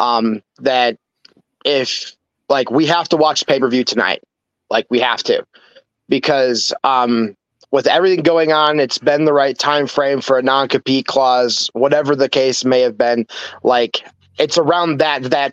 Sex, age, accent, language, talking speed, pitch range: male, 20-39, American, English, 160 wpm, 130-160 Hz